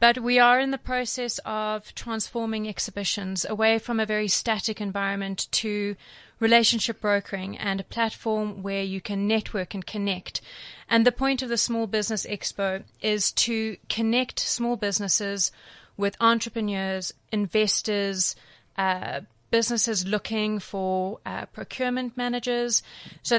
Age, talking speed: 30-49, 130 wpm